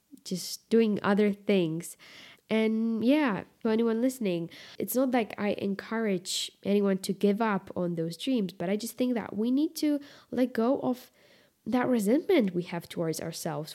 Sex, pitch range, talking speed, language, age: female, 185-245 Hz, 165 wpm, English, 10-29